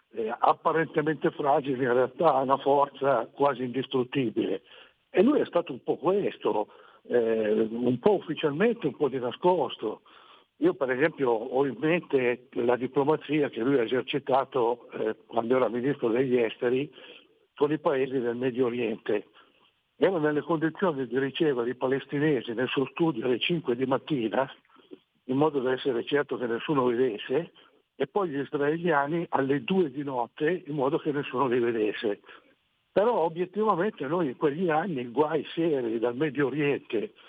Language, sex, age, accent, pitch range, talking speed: Italian, male, 60-79, native, 130-165 Hz, 155 wpm